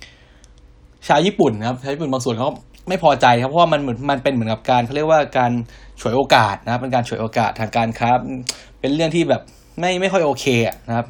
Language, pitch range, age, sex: Thai, 115-145 Hz, 20-39, male